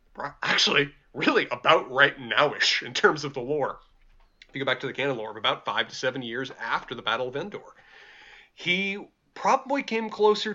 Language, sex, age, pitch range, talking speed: English, male, 30-49, 130-180 Hz, 180 wpm